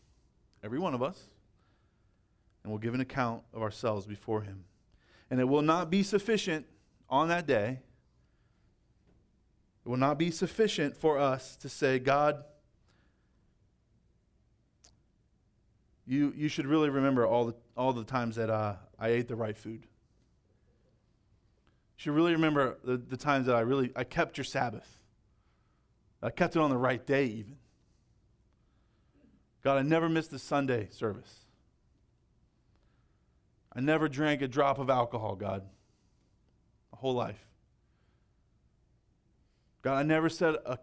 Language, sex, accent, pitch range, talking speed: English, male, American, 110-150 Hz, 140 wpm